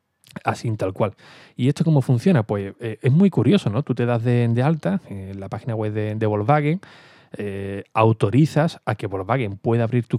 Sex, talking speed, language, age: male, 200 wpm, Spanish, 20-39